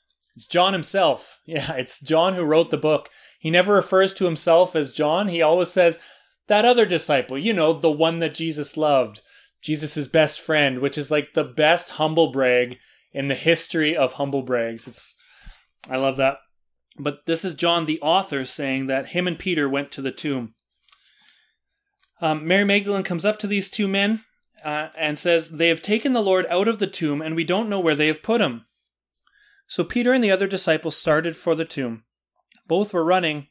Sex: male